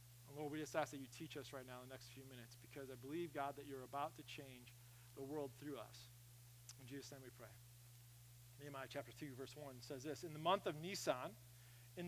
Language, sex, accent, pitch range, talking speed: English, male, American, 120-195 Hz, 230 wpm